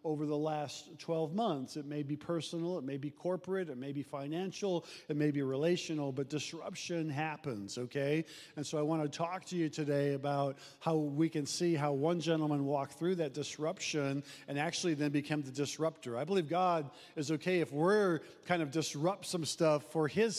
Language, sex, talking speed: English, male, 195 wpm